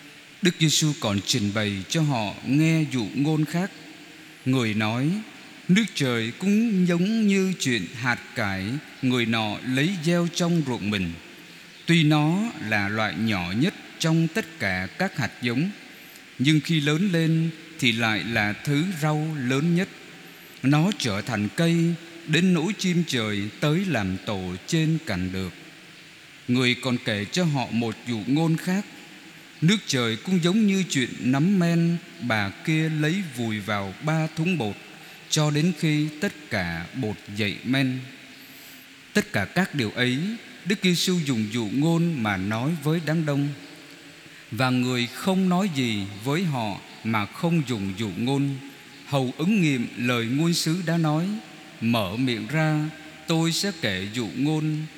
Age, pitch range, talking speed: 20-39, 115-165 Hz, 155 wpm